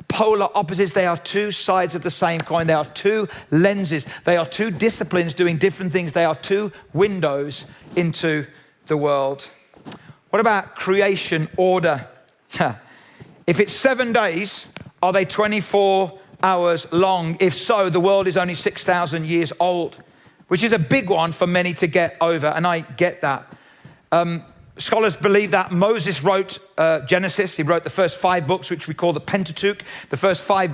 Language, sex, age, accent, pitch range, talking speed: English, male, 40-59, British, 170-205 Hz, 165 wpm